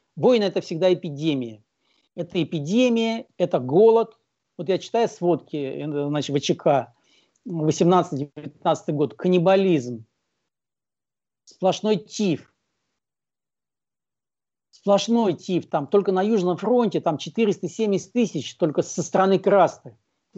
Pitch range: 160-215 Hz